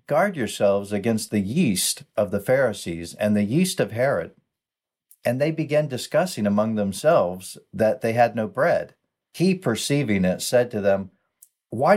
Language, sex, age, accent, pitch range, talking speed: English, male, 50-69, American, 105-140 Hz, 155 wpm